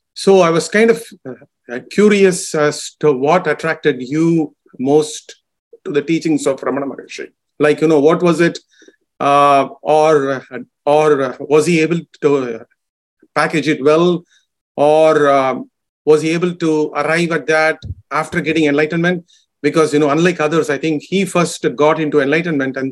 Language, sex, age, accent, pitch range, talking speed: English, male, 40-59, Indian, 145-170 Hz, 155 wpm